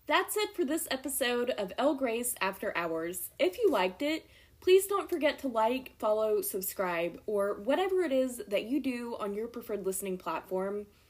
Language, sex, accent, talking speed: English, female, American, 180 wpm